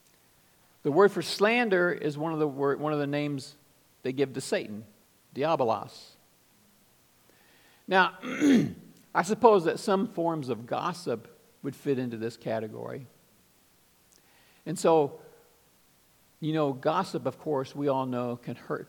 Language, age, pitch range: English, 50-69, 120-175 Hz